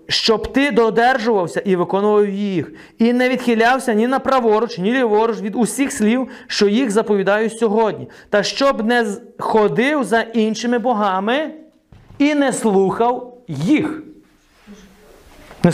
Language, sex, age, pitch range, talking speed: Ukrainian, male, 30-49, 155-230 Hz, 125 wpm